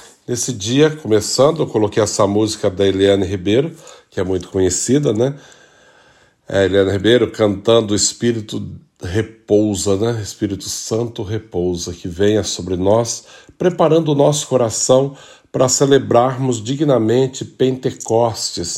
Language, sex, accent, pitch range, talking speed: Portuguese, male, Brazilian, 105-140 Hz, 130 wpm